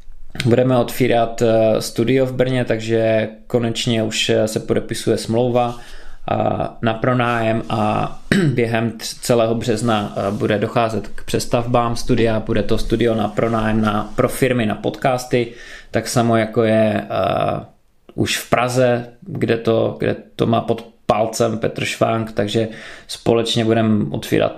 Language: Czech